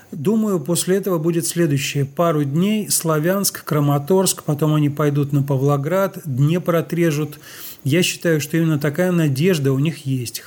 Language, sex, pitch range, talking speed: Russian, male, 140-165 Hz, 150 wpm